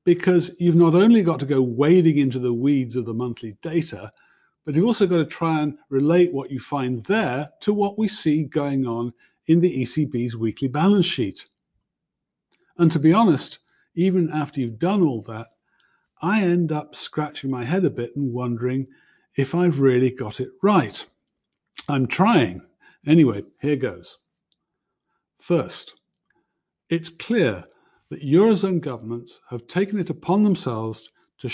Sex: male